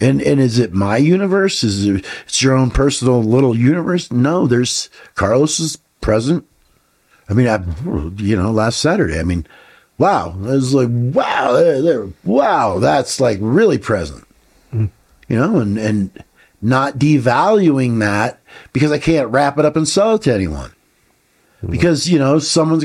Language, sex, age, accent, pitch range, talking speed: English, male, 50-69, American, 110-155 Hz, 160 wpm